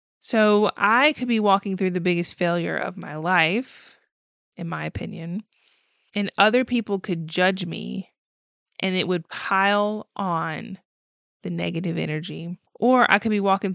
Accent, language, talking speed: American, English, 150 wpm